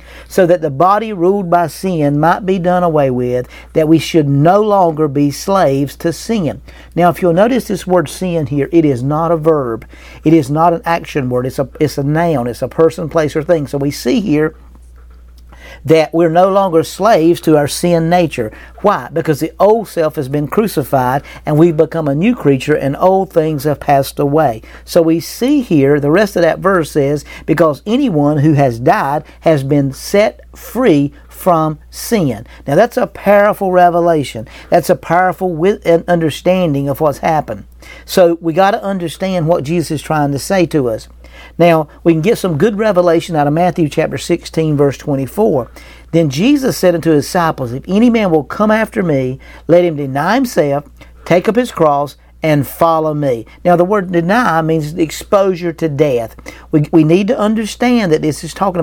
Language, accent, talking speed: English, American, 190 wpm